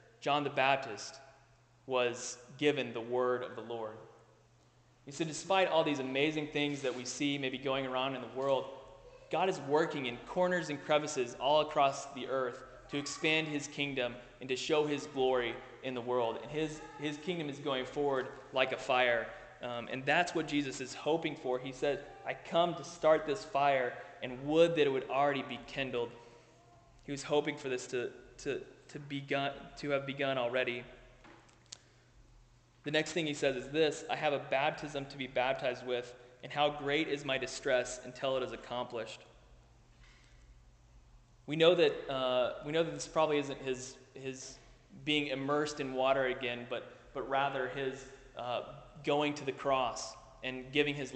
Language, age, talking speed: English, 20-39, 175 wpm